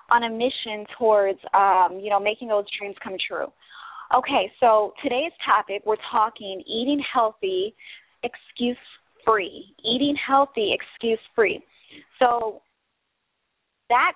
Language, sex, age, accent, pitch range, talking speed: English, female, 20-39, American, 190-245 Hz, 110 wpm